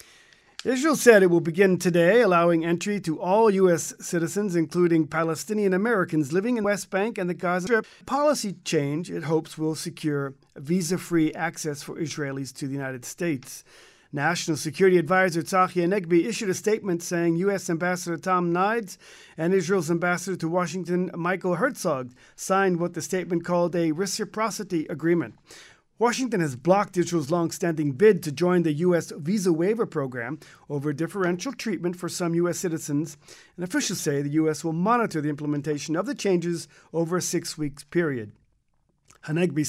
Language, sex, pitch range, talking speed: English, male, 160-190 Hz, 155 wpm